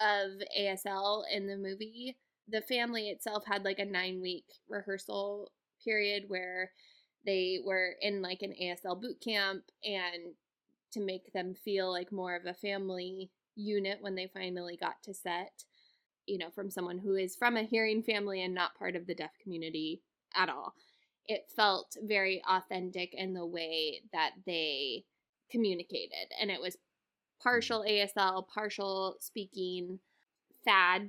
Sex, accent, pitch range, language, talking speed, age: female, American, 180-205 Hz, English, 150 wpm, 10-29